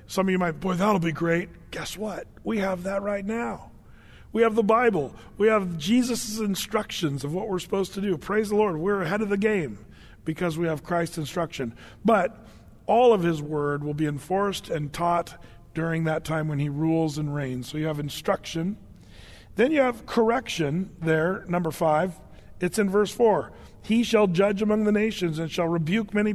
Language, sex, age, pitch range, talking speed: English, male, 40-59, 155-200 Hz, 195 wpm